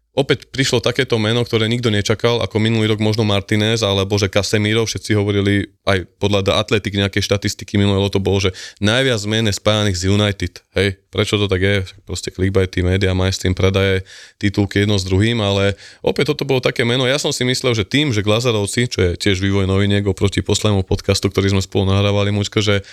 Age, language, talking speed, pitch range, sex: 20-39, Slovak, 195 wpm, 100-115 Hz, male